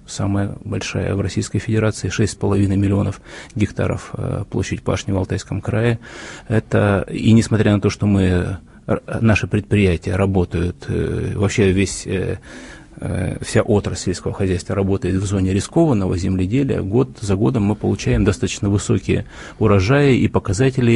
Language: Russian